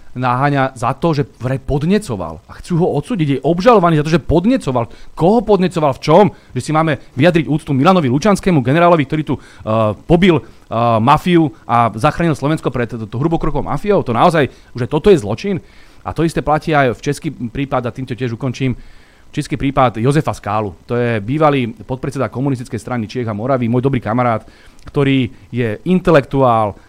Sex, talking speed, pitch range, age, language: male, 165 wpm, 115-165 Hz, 30-49, Slovak